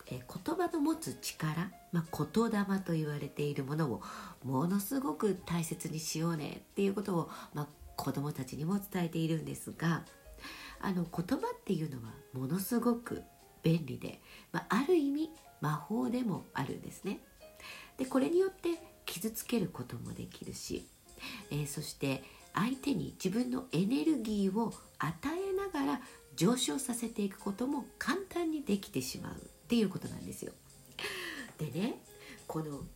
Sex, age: female, 50-69